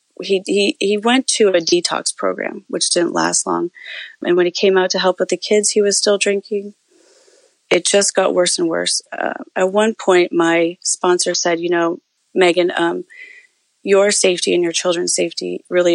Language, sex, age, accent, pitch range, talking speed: English, female, 30-49, American, 170-210 Hz, 190 wpm